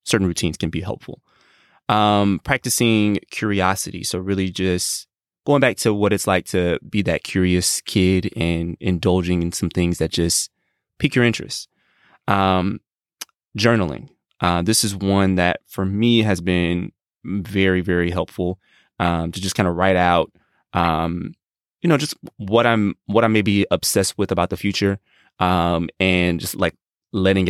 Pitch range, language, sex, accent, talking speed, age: 90-100 Hz, English, male, American, 160 wpm, 20-39